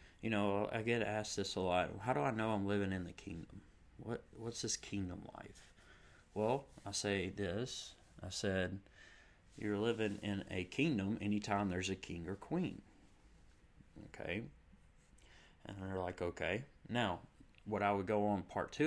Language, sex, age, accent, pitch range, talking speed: English, male, 30-49, American, 90-105 Hz, 165 wpm